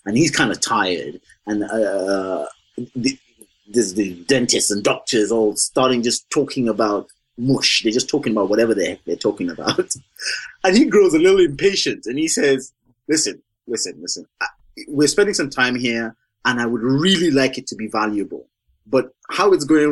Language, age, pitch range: English, 20-39, 110-150 Hz